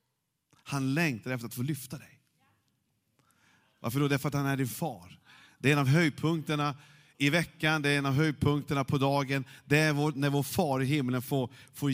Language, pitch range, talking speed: Swedish, 125-155 Hz, 205 wpm